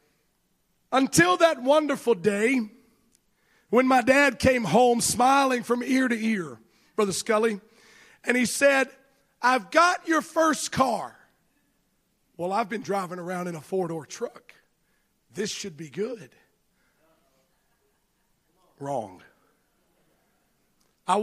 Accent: American